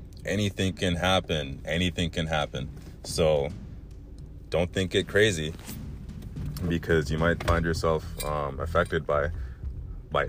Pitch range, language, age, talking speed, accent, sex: 75-85 Hz, English, 30-49, 115 wpm, American, male